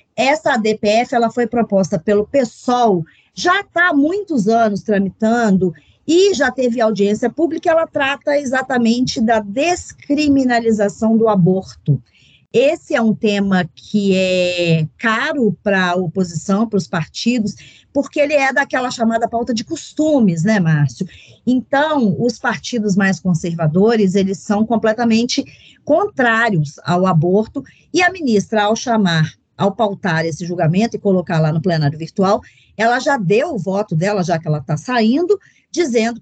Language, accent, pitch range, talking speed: Portuguese, Brazilian, 185-265 Hz, 140 wpm